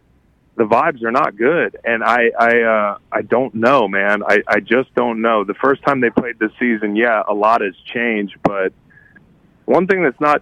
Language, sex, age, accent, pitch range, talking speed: English, male, 30-49, American, 100-115 Hz, 200 wpm